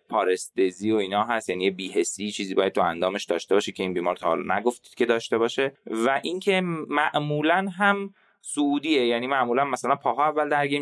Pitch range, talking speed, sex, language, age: 105-145 Hz, 185 wpm, male, Persian, 20-39